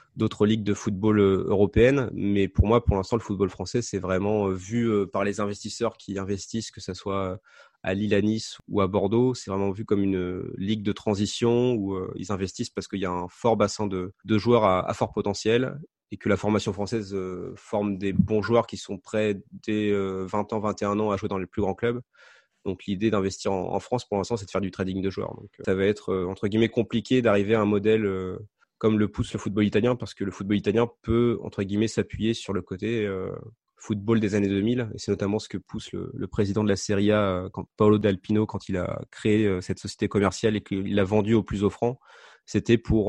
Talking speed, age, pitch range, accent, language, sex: 220 wpm, 20-39, 95-110 Hz, French, French, male